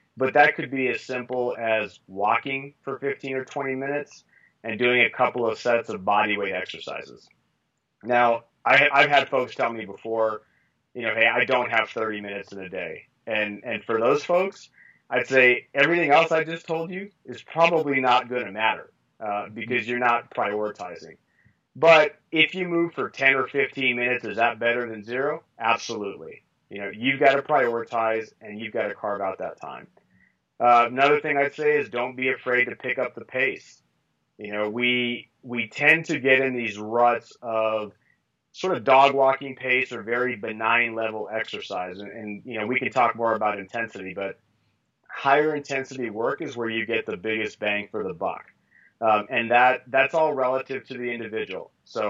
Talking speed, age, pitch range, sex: 190 wpm, 30-49, 115-135 Hz, male